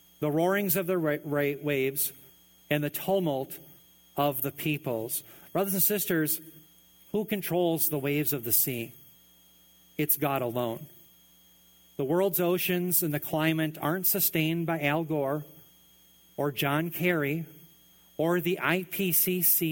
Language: English